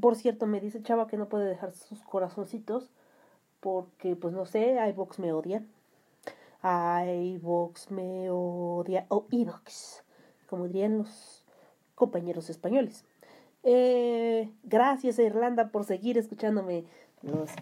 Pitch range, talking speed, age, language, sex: 185-255 Hz, 125 wpm, 30-49, Spanish, female